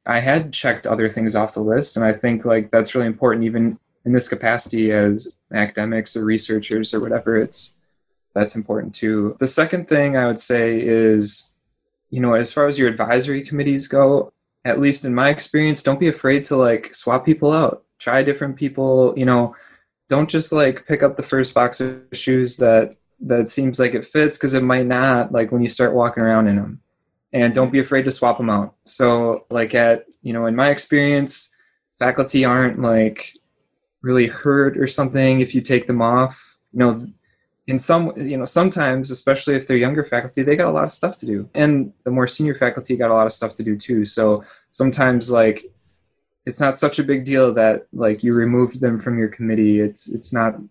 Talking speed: 205 wpm